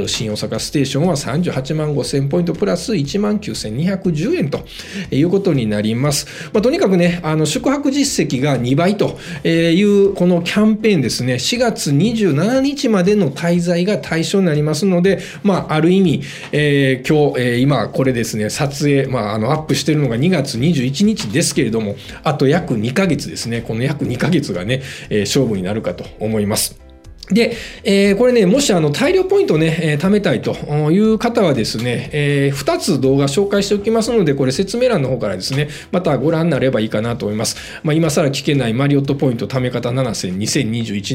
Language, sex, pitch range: Japanese, male, 125-180 Hz